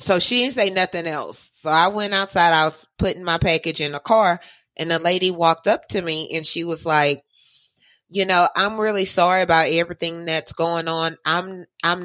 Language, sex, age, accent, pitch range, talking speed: English, female, 30-49, American, 160-190 Hz, 205 wpm